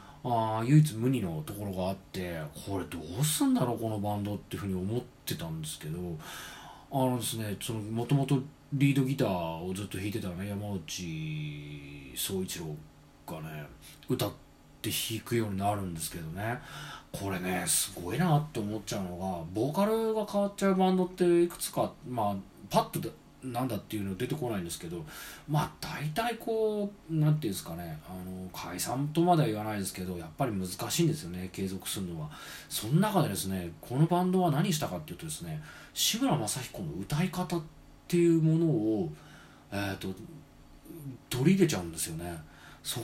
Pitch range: 95-160 Hz